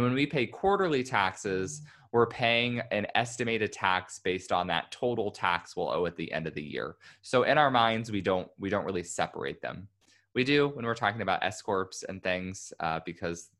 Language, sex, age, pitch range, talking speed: English, male, 20-39, 95-125 Hz, 205 wpm